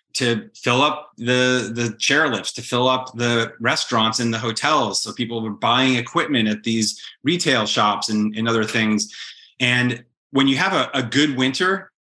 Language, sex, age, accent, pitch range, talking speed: English, male, 30-49, American, 110-125 Hz, 175 wpm